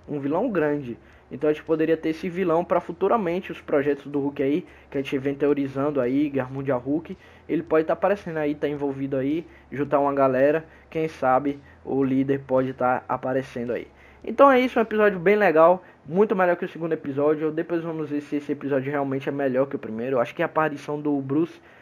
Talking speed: 215 wpm